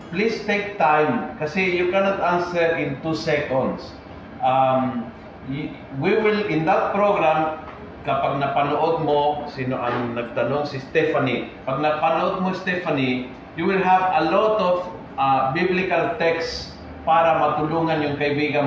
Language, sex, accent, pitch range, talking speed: Filipino, male, native, 135-165 Hz, 130 wpm